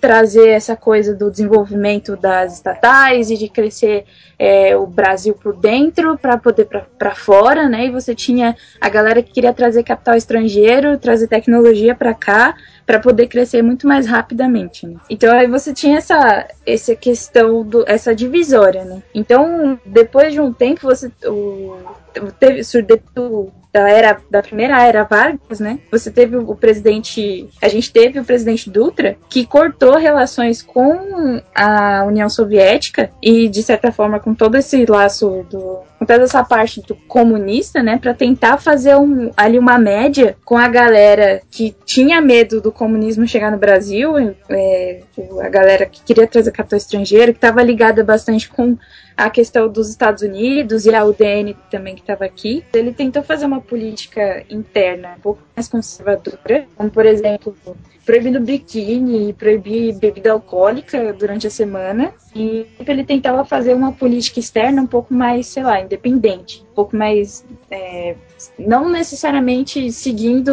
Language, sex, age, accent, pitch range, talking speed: Portuguese, female, 10-29, Brazilian, 210-250 Hz, 160 wpm